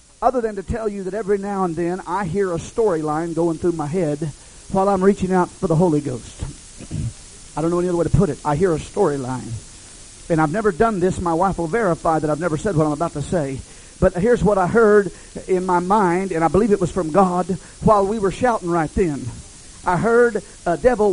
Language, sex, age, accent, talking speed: English, male, 40-59, American, 235 wpm